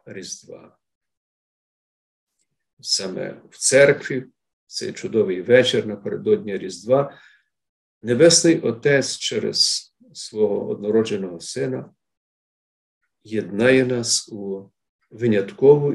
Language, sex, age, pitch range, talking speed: Ukrainian, male, 50-69, 95-140 Hz, 70 wpm